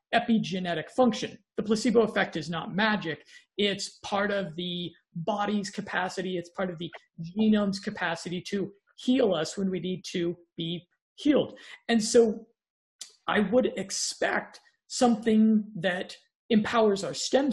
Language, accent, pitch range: English, American, 185-230 Hz